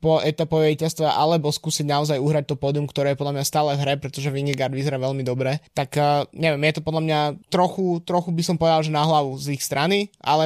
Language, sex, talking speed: Slovak, male, 225 wpm